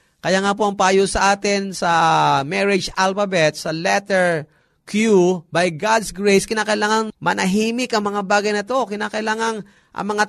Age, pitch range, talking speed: 30-49, 175-230 Hz, 150 wpm